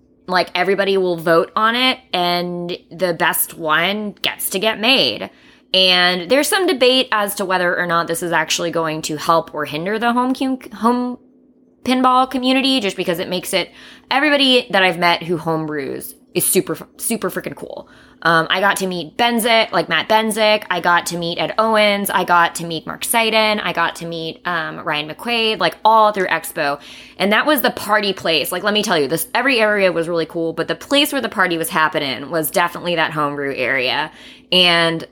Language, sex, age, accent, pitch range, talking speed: English, female, 20-39, American, 165-215 Hz, 195 wpm